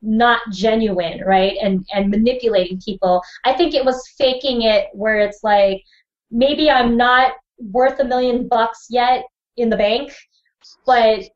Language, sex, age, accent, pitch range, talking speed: English, female, 20-39, American, 195-240 Hz, 150 wpm